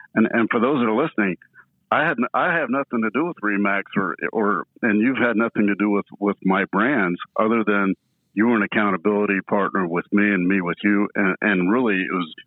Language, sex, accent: English, male, American